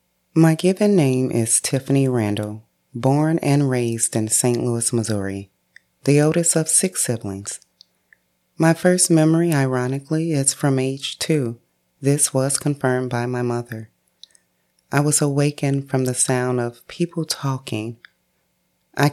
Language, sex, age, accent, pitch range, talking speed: English, female, 30-49, American, 115-140 Hz, 130 wpm